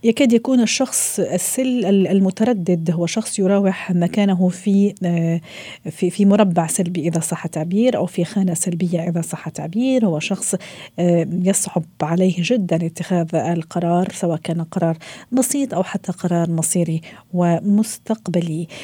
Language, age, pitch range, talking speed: Arabic, 40-59, 170-220 Hz, 125 wpm